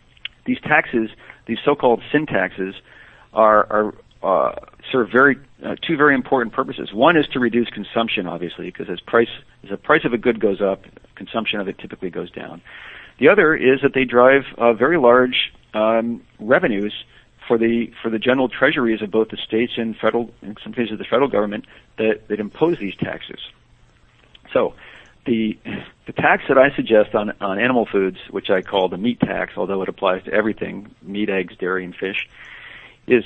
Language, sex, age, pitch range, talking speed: English, male, 50-69, 105-125 Hz, 180 wpm